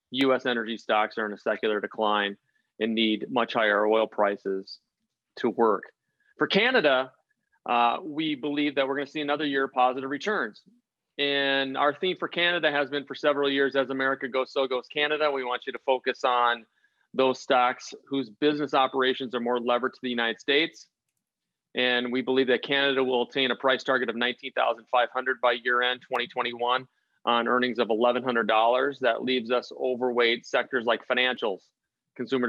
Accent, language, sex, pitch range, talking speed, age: American, English, male, 120-135 Hz, 170 wpm, 30-49